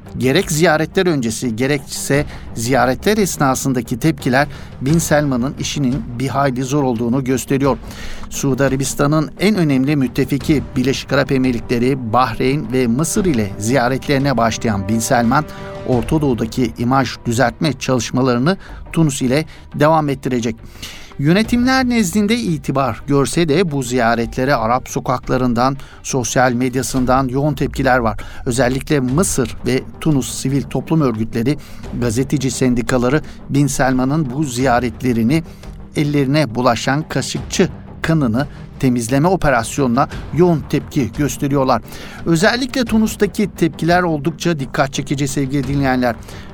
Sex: male